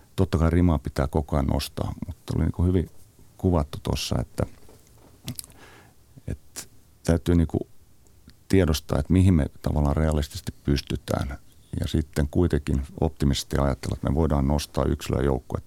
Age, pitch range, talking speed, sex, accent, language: 50-69, 70-90 Hz, 140 wpm, male, native, Finnish